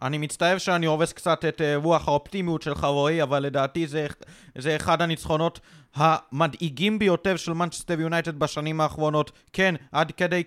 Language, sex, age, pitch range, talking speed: Hebrew, male, 30-49, 150-170 Hz, 155 wpm